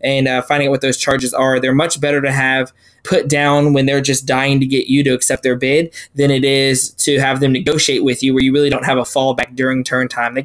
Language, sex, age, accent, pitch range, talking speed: English, male, 20-39, American, 130-150 Hz, 265 wpm